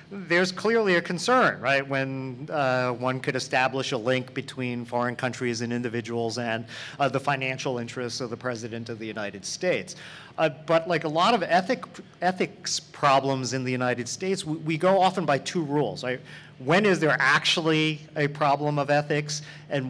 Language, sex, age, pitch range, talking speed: English, male, 40-59, 125-155 Hz, 180 wpm